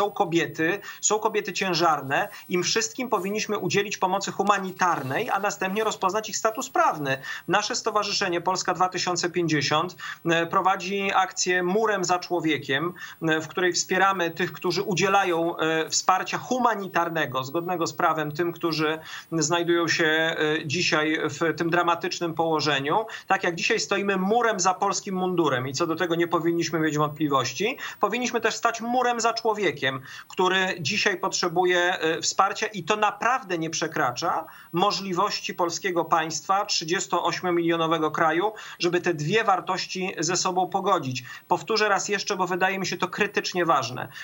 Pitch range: 165-200 Hz